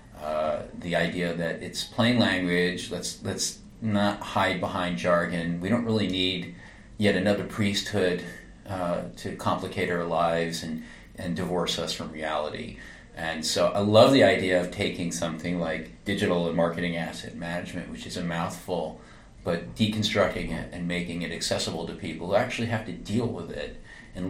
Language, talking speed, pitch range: English, 165 wpm, 85-105 Hz